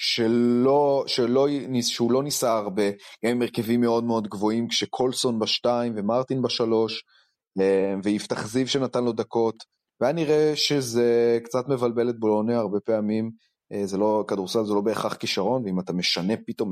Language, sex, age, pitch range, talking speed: Hebrew, male, 30-49, 105-125 Hz, 145 wpm